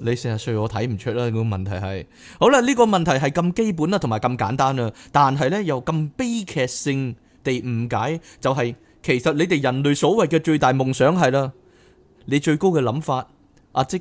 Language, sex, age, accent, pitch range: Chinese, male, 20-39, native, 115-155 Hz